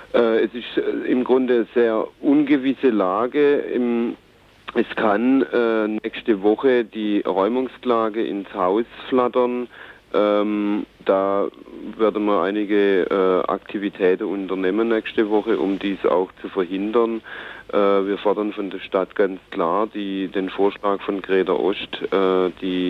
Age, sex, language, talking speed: 50-69, male, German, 115 wpm